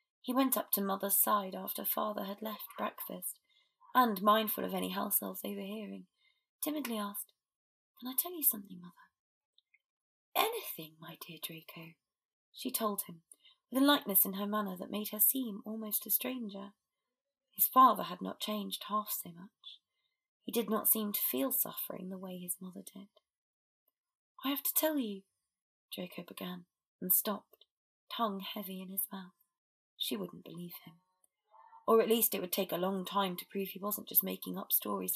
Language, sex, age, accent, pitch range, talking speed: English, female, 20-39, British, 190-250 Hz, 170 wpm